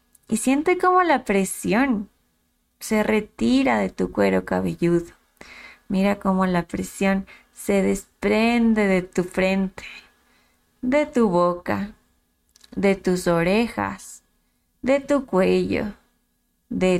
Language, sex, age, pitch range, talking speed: Spanish, female, 20-39, 165-235 Hz, 105 wpm